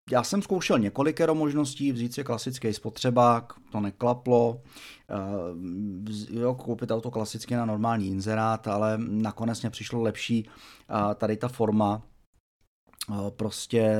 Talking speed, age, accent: 115 wpm, 30-49, native